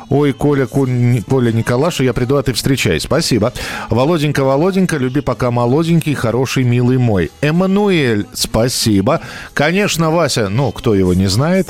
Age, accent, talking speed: 40-59, native, 140 wpm